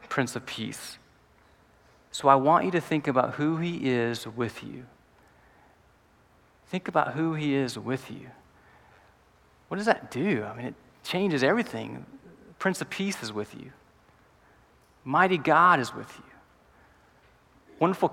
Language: English